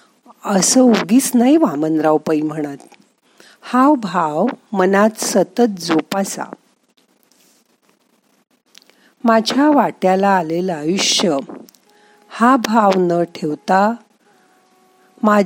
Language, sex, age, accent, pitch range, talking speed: Marathi, female, 50-69, native, 175-250 Hz, 55 wpm